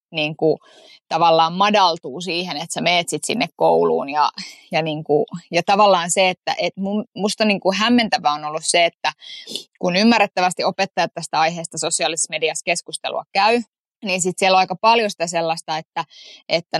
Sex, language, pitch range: female, Finnish, 165-205 Hz